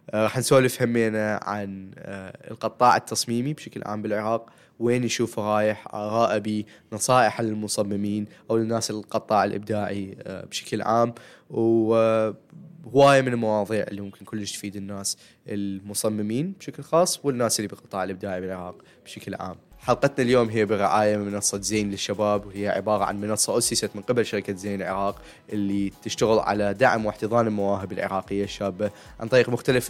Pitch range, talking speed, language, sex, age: 100-110 Hz, 135 wpm, Arabic, male, 20-39